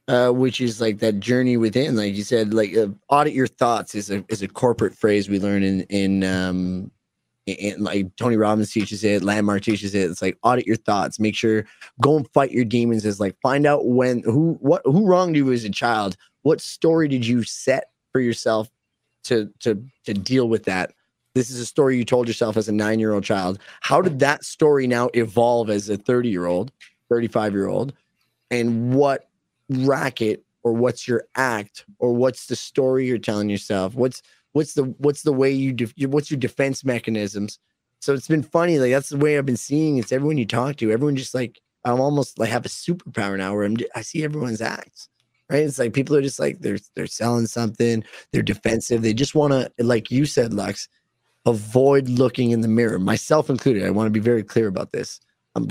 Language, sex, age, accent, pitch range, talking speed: English, male, 20-39, American, 110-135 Hz, 210 wpm